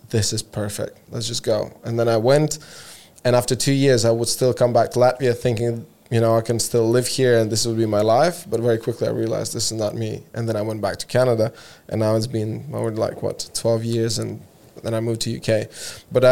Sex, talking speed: male, 245 wpm